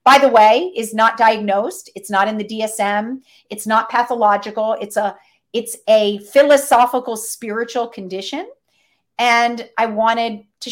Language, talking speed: English, 140 wpm